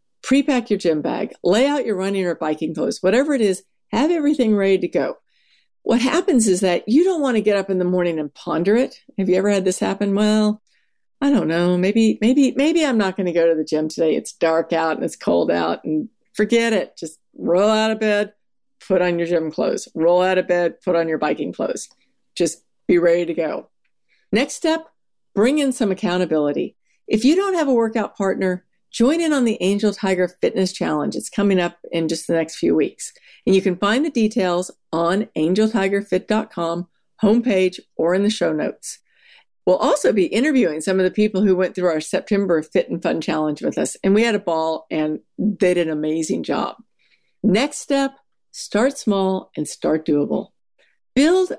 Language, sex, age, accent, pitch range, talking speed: English, female, 50-69, American, 170-230 Hz, 200 wpm